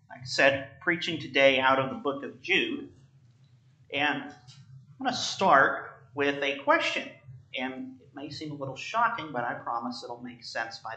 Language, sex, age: English, male, 40-59